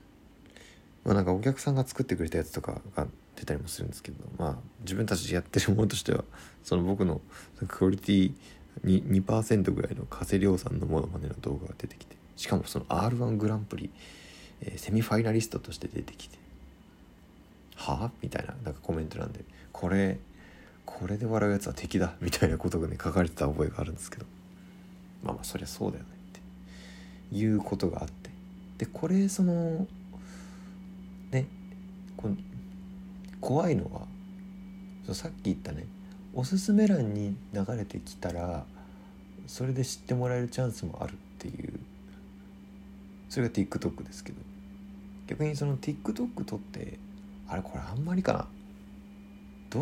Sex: male